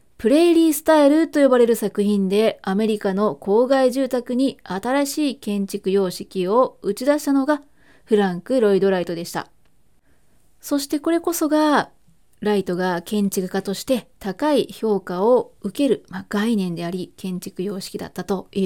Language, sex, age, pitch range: Japanese, female, 20-39, 195-270 Hz